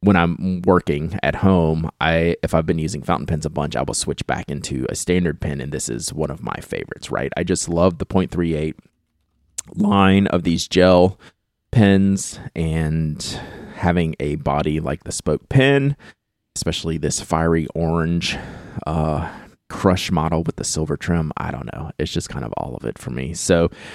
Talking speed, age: 180 wpm, 30-49